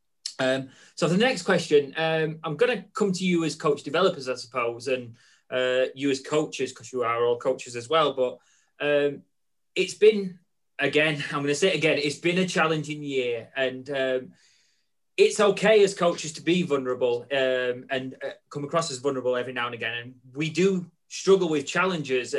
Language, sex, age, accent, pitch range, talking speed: English, male, 20-39, British, 135-185 Hz, 190 wpm